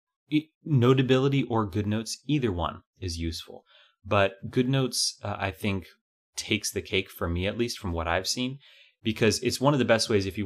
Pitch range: 90-110 Hz